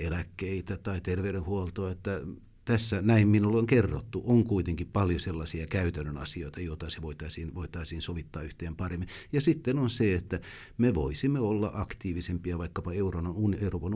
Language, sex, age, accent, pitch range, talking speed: Finnish, male, 60-79, native, 85-110 Hz, 140 wpm